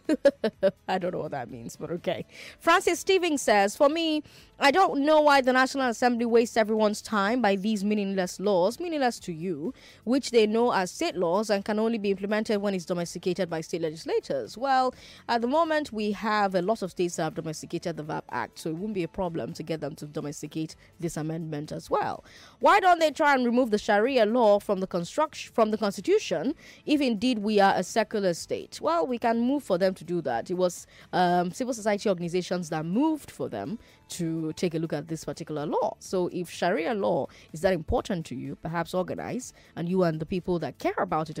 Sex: female